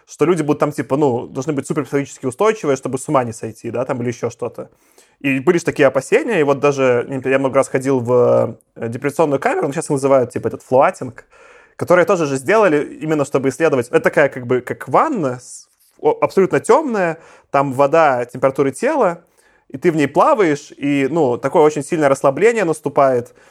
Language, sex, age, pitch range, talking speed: Russian, male, 20-39, 130-160 Hz, 185 wpm